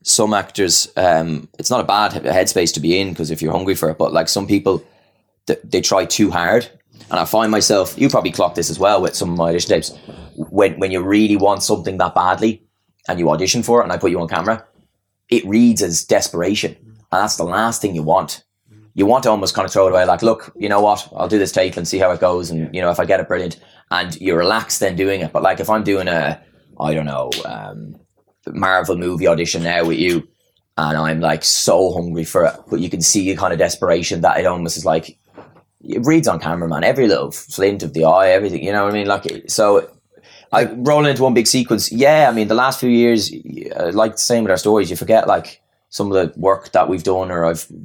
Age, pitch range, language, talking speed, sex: 20-39, 80-110 Hz, English, 245 wpm, male